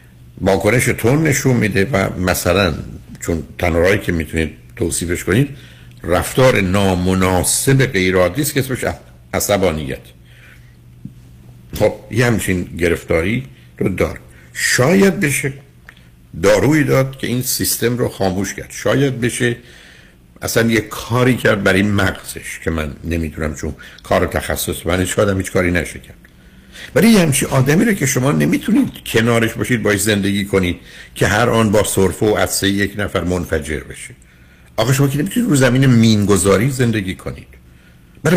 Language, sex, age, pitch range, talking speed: Persian, male, 60-79, 80-130 Hz, 135 wpm